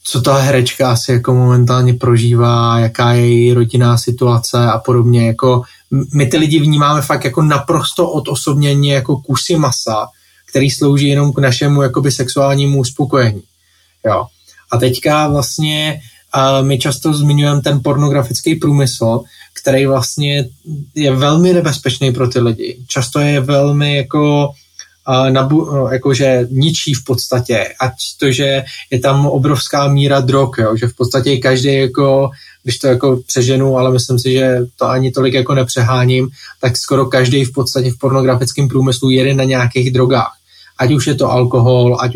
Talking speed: 150 wpm